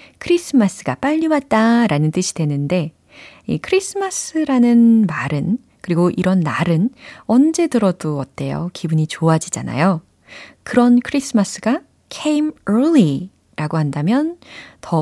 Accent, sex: native, female